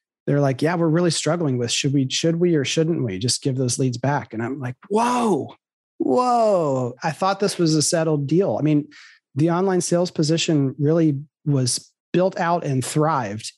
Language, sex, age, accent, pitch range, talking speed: English, male, 30-49, American, 135-170 Hz, 190 wpm